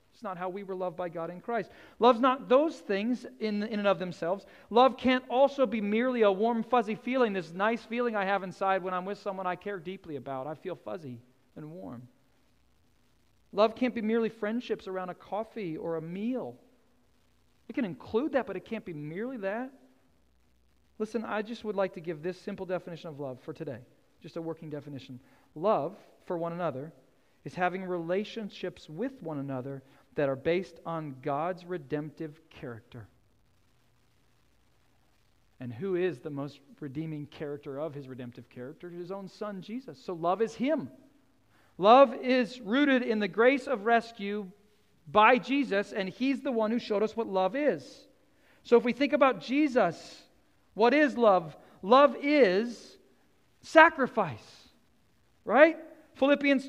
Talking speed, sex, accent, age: 165 wpm, male, American, 40-59